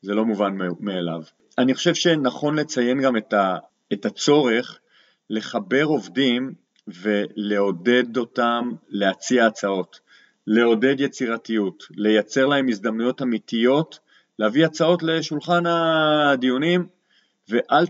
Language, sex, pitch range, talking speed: Hebrew, male, 110-145 Hz, 95 wpm